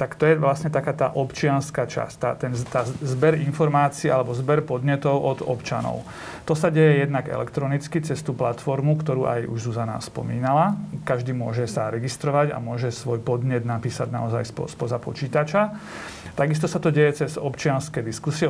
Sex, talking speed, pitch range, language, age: male, 165 wpm, 125-155 Hz, Slovak, 40-59